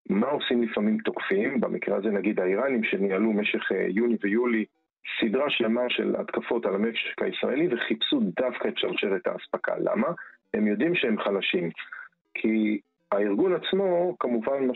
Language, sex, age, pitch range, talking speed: Hebrew, male, 40-59, 110-135 Hz, 140 wpm